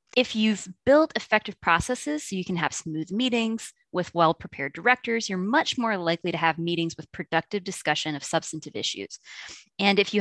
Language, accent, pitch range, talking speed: English, American, 165-215 Hz, 175 wpm